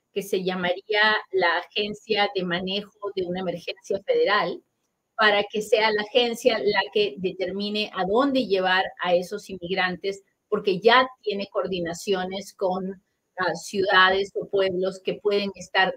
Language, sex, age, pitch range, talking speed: Spanish, female, 30-49, 180-220 Hz, 140 wpm